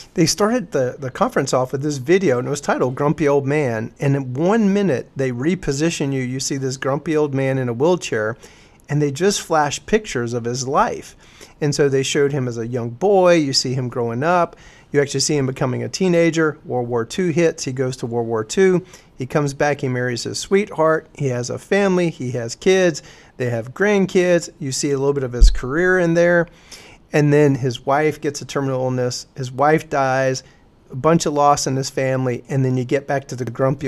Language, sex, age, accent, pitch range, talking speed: English, male, 40-59, American, 130-165 Hz, 220 wpm